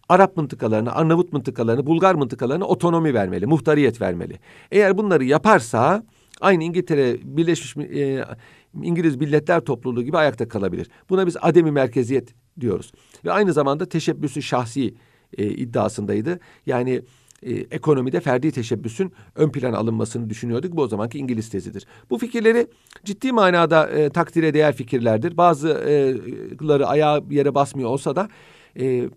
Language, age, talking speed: Turkish, 50-69, 140 wpm